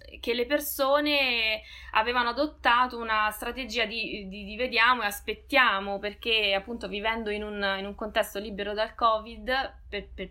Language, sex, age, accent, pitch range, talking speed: Italian, female, 20-39, native, 195-235 Hz, 150 wpm